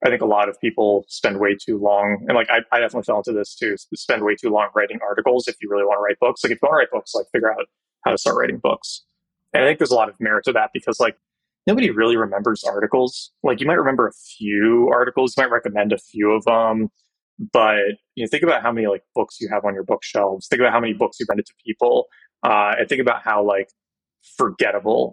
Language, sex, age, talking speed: English, male, 20-39, 255 wpm